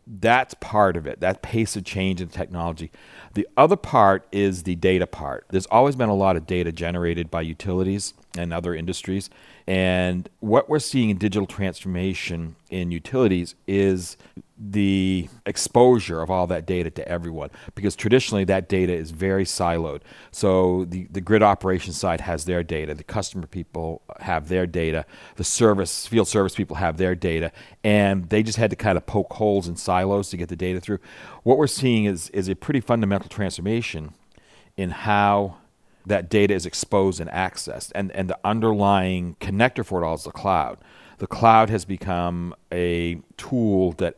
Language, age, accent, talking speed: English, 40-59, American, 175 wpm